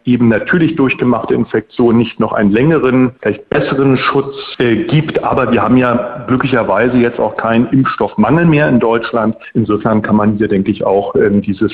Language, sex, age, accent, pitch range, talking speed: German, male, 40-59, German, 125-160 Hz, 175 wpm